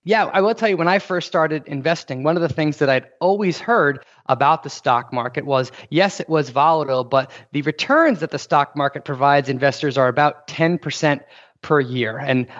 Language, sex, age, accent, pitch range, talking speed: English, male, 30-49, American, 140-175 Hz, 200 wpm